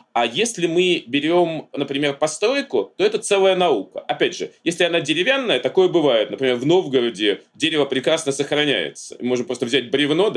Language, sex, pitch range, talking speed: Russian, male, 140-190 Hz, 155 wpm